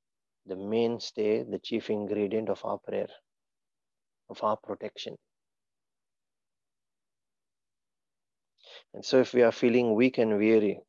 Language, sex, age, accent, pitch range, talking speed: English, male, 30-49, Indian, 105-115 Hz, 110 wpm